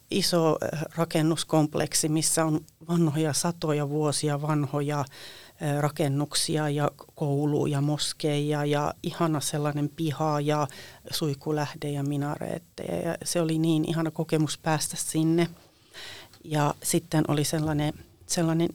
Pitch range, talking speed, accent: 150-170 Hz, 100 wpm, native